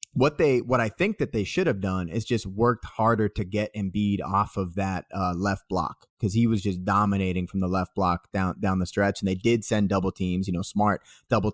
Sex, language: male, English